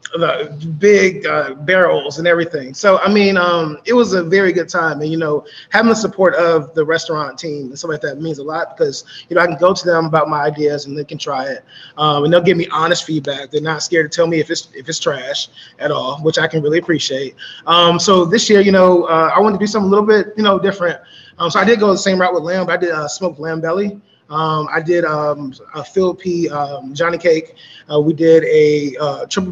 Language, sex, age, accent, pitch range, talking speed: English, male, 20-39, American, 155-185 Hz, 260 wpm